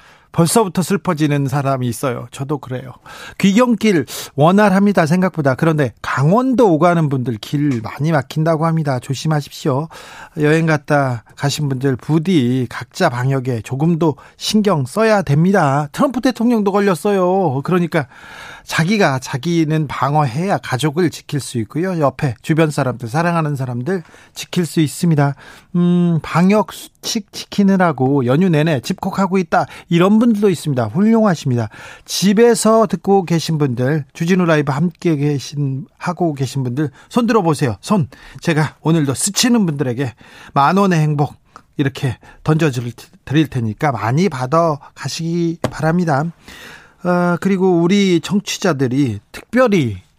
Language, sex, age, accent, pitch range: Korean, male, 40-59, native, 140-190 Hz